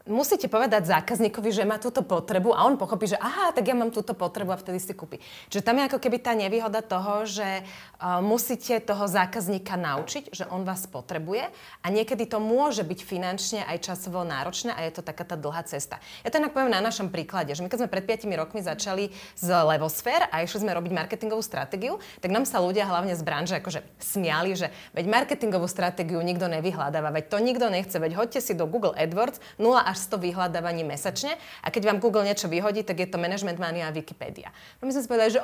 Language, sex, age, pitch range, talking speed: Slovak, female, 30-49, 175-225 Hz, 210 wpm